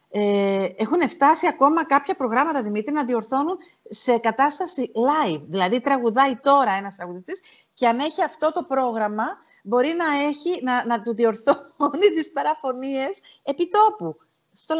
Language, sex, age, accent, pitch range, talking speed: Greek, female, 40-59, native, 225-330 Hz, 140 wpm